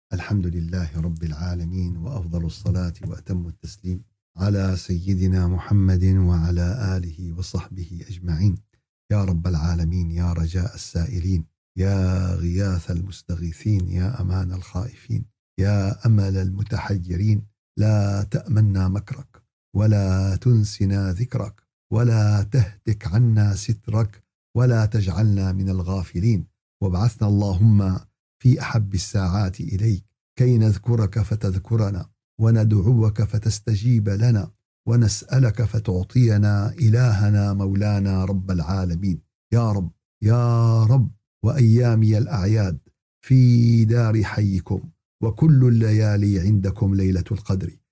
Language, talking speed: Arabic, 95 wpm